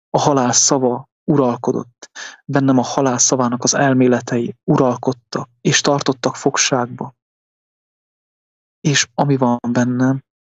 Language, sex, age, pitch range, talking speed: English, male, 20-39, 120-140 Hz, 105 wpm